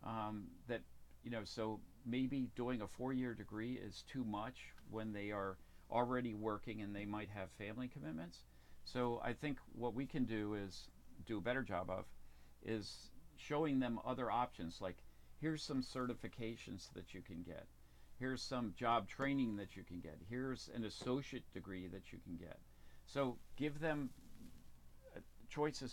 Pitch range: 90-125 Hz